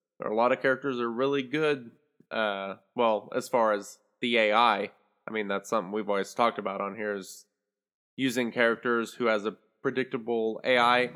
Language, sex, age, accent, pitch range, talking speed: English, male, 20-39, American, 110-135 Hz, 170 wpm